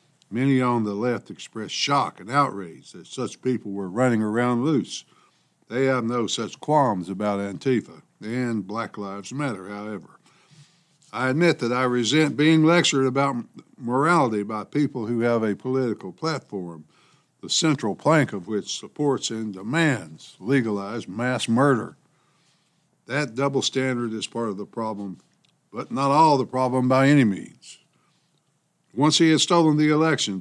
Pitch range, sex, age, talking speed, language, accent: 110-145 Hz, male, 60-79, 150 wpm, English, American